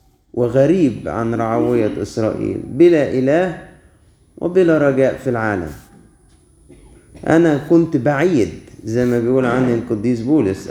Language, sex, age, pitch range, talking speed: Arabic, male, 30-49, 110-140 Hz, 105 wpm